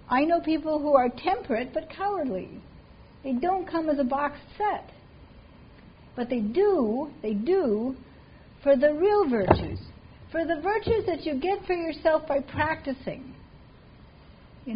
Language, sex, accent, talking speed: English, female, American, 140 wpm